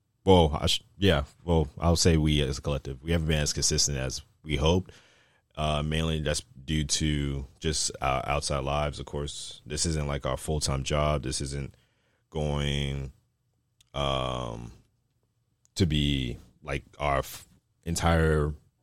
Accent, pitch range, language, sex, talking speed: American, 70-90 Hz, English, male, 145 wpm